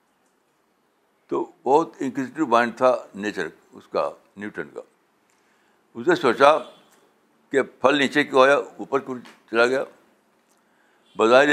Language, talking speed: Urdu, 120 wpm